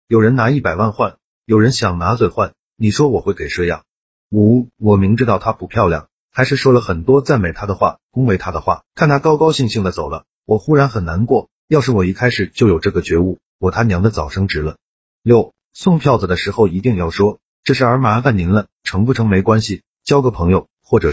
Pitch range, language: 95-125 Hz, Chinese